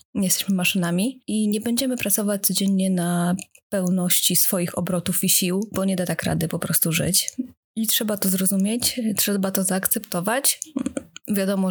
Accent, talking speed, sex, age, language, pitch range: native, 150 wpm, female, 30-49, Polish, 180-215 Hz